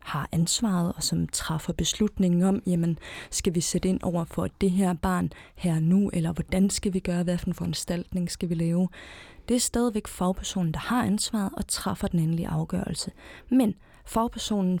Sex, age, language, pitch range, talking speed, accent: female, 30-49, Danish, 175-200 Hz, 175 wpm, native